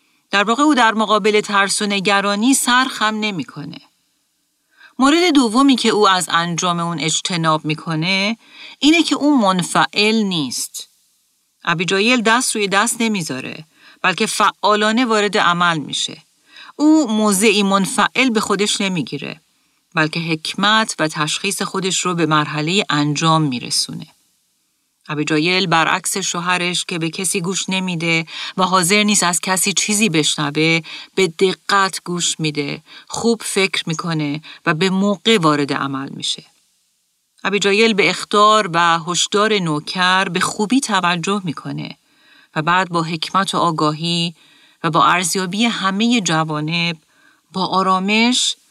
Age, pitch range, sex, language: 40-59, 165-215 Hz, female, Persian